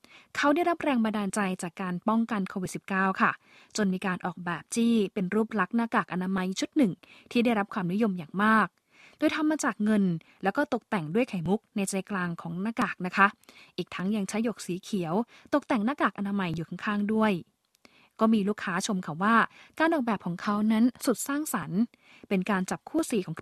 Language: Thai